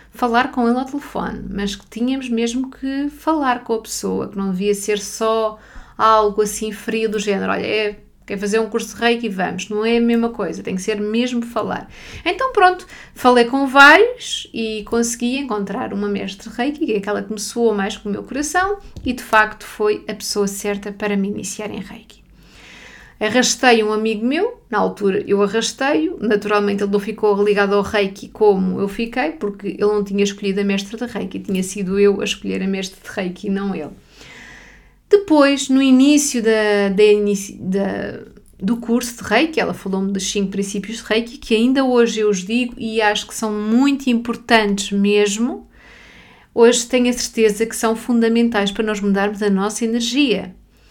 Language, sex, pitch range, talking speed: Portuguese, female, 205-240 Hz, 185 wpm